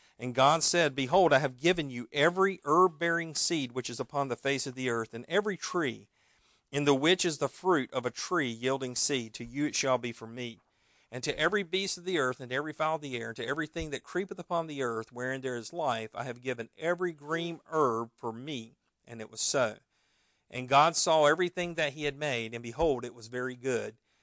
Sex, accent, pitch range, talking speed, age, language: male, American, 125-165 Hz, 225 wpm, 50-69, English